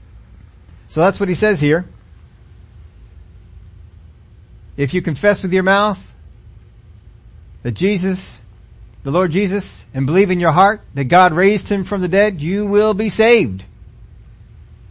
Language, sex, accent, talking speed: English, male, American, 135 wpm